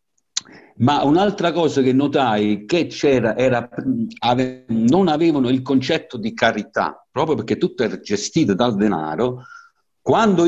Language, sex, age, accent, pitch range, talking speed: Italian, male, 60-79, native, 105-170 Hz, 130 wpm